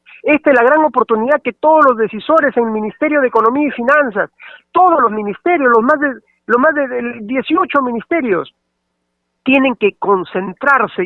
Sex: male